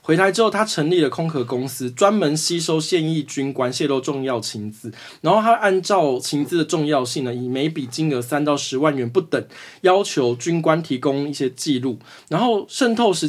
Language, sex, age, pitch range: Chinese, male, 20-39, 125-180 Hz